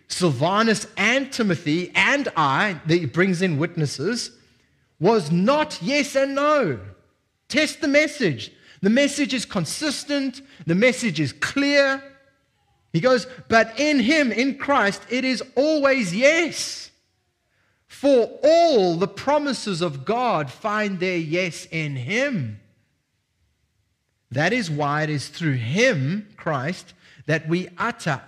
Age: 30-49